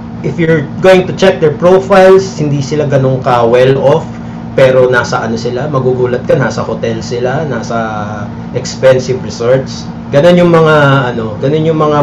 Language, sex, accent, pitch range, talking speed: Filipino, male, native, 120-150 Hz, 160 wpm